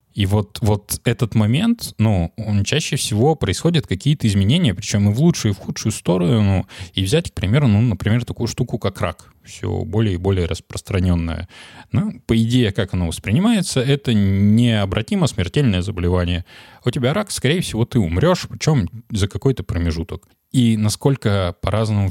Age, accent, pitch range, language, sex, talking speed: 20-39, native, 95-120 Hz, Russian, male, 155 wpm